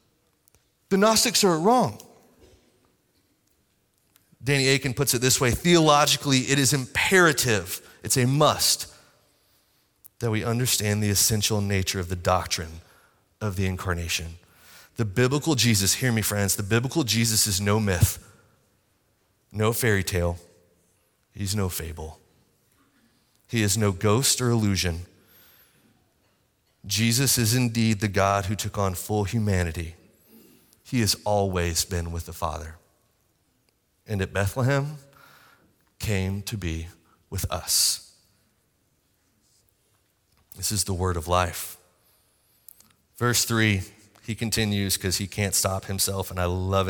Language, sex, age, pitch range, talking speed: English, male, 30-49, 95-120 Hz, 125 wpm